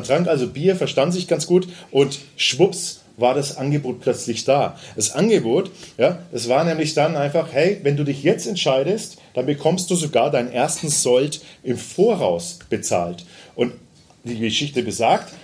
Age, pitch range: 40-59, 120-165 Hz